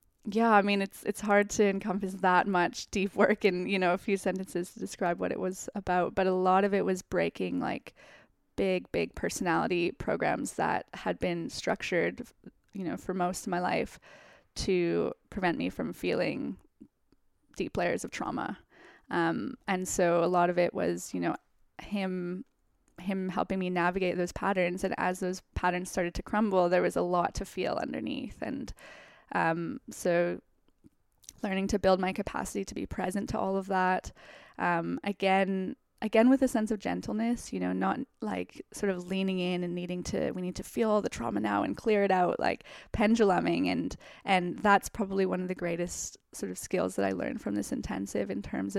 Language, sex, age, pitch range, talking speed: English, female, 20-39, 180-200 Hz, 190 wpm